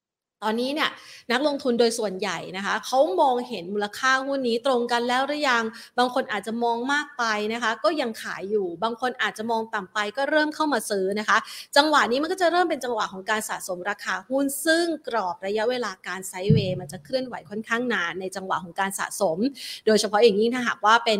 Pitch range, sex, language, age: 215-265 Hz, female, Thai, 30-49